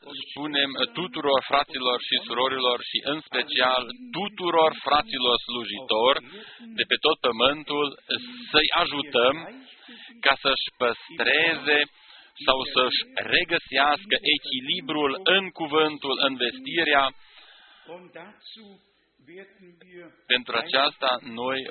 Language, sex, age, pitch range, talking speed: Romanian, male, 40-59, 120-150 Hz, 85 wpm